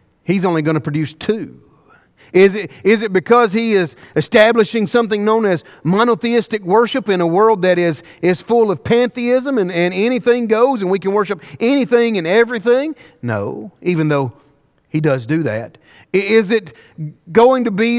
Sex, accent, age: male, American, 40-59